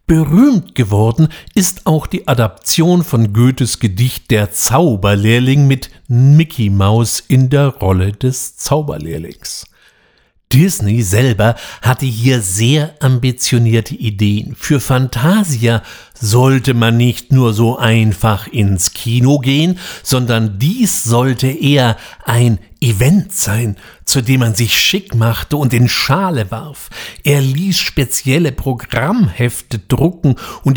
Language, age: German, 60-79